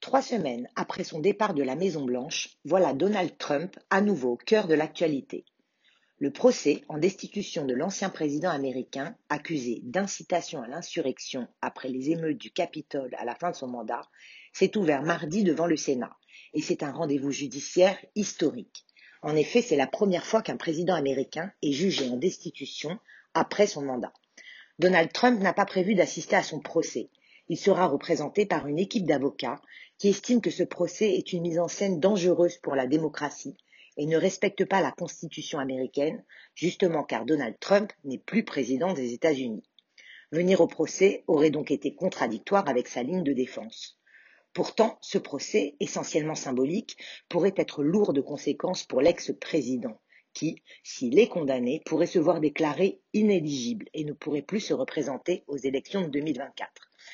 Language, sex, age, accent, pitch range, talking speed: French, female, 40-59, French, 145-190 Hz, 165 wpm